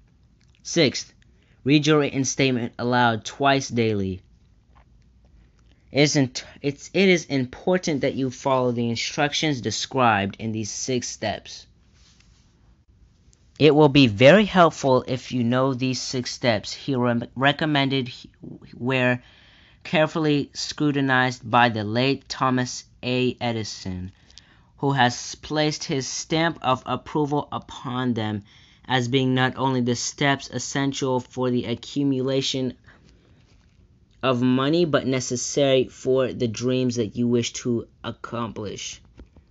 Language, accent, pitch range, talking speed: English, American, 115-135 Hz, 120 wpm